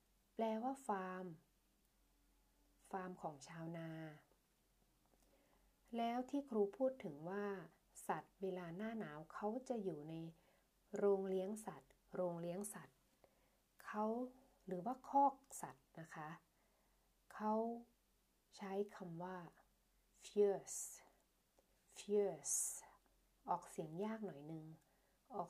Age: 30-49